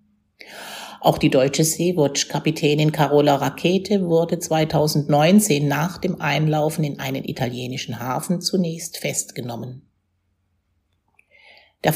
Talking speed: 90 wpm